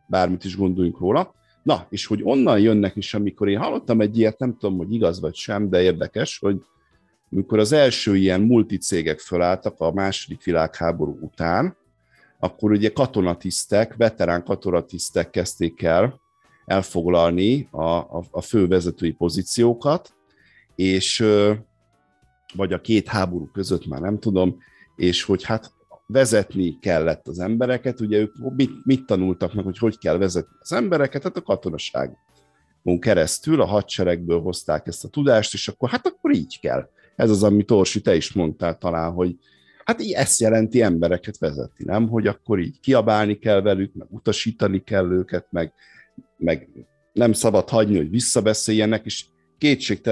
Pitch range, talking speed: 90-110 Hz, 150 wpm